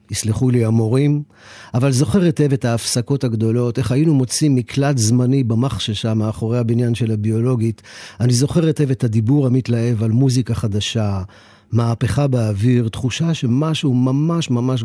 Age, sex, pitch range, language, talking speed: 40-59, male, 110-140 Hz, Hebrew, 135 wpm